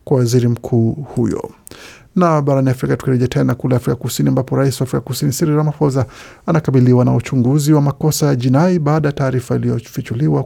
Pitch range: 125-150 Hz